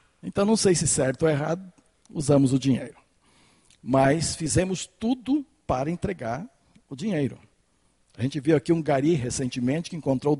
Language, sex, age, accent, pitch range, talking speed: Portuguese, male, 60-79, Brazilian, 145-220 Hz, 150 wpm